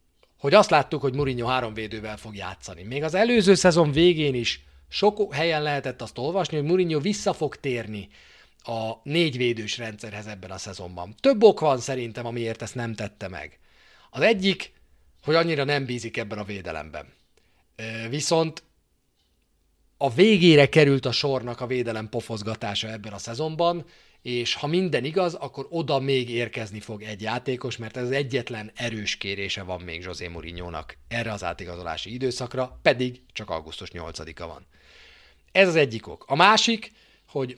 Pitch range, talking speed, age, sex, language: 105-155 Hz, 160 wpm, 30-49, male, Hungarian